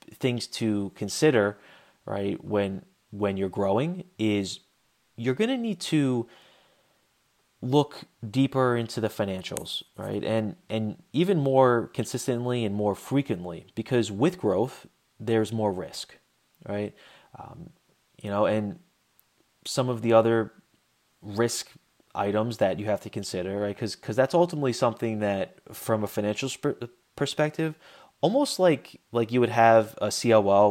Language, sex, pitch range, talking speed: English, male, 105-130 Hz, 135 wpm